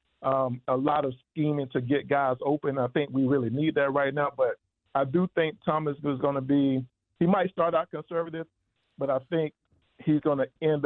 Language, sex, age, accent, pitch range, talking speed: English, male, 50-69, American, 130-150 Hz, 210 wpm